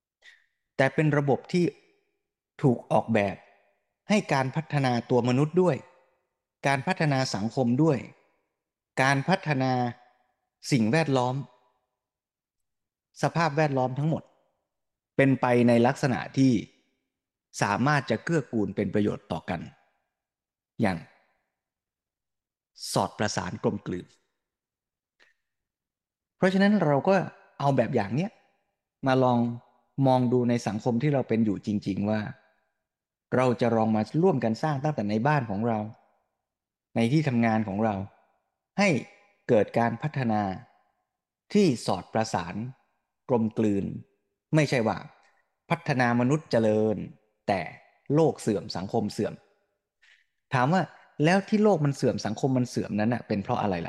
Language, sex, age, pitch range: Thai, male, 20-39, 110-150 Hz